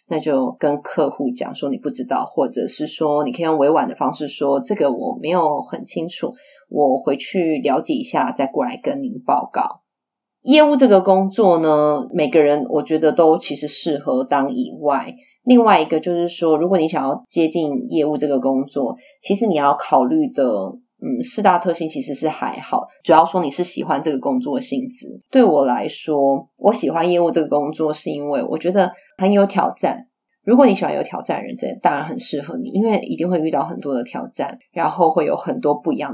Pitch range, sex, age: 150-235 Hz, female, 20-39